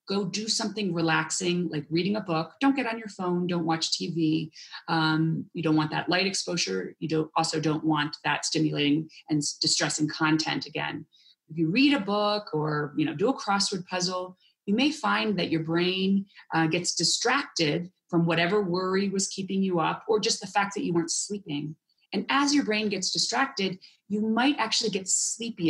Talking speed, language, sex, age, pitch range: 180 wpm, English, female, 30-49, 165-215 Hz